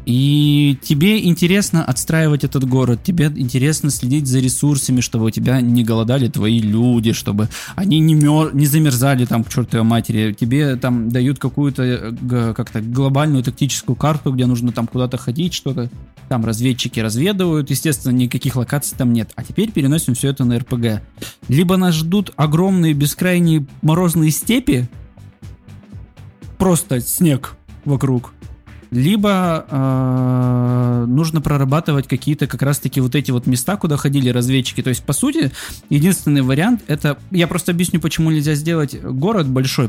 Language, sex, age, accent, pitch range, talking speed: Russian, male, 20-39, native, 125-155 Hz, 145 wpm